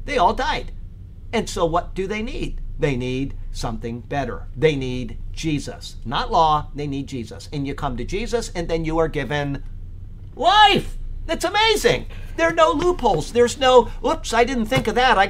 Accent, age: American, 50-69